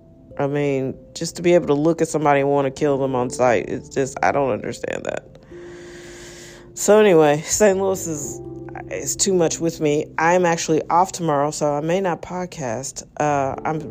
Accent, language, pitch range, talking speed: American, English, 140-170 Hz, 190 wpm